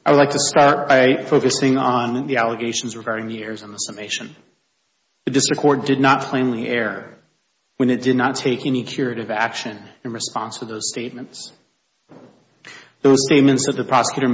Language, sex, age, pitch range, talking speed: English, male, 30-49, 115-135 Hz, 170 wpm